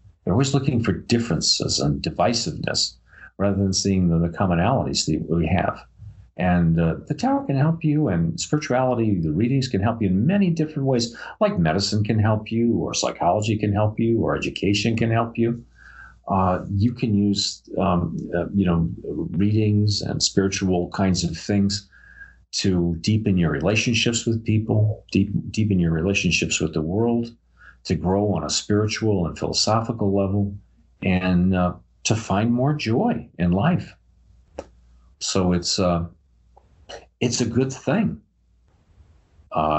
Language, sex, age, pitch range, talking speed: English, male, 50-69, 90-115 Hz, 150 wpm